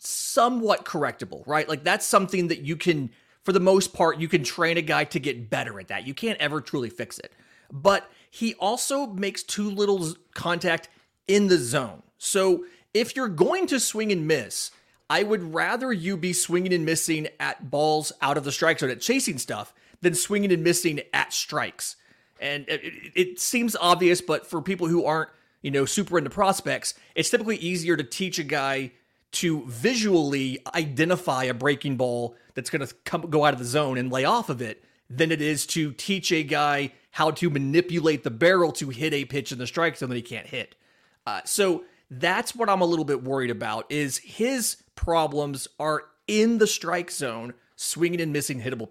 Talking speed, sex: 195 wpm, male